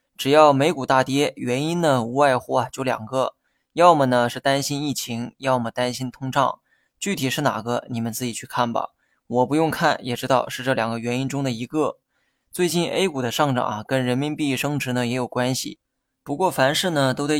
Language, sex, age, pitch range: Chinese, male, 20-39, 125-145 Hz